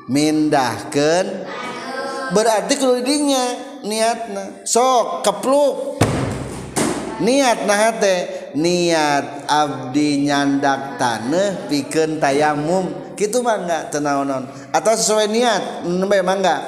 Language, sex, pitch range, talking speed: Indonesian, male, 145-230 Hz, 80 wpm